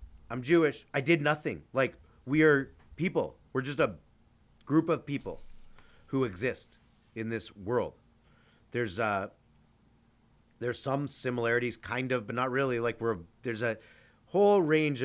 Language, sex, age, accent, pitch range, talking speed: English, male, 30-49, American, 100-125 Hz, 145 wpm